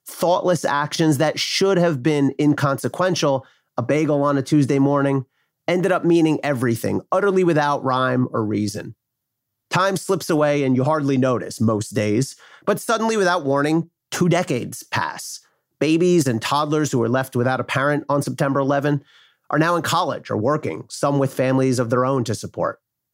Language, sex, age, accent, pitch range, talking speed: English, male, 30-49, American, 130-165 Hz, 165 wpm